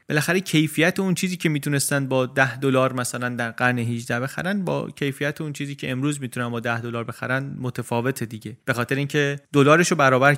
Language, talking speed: Persian, 185 wpm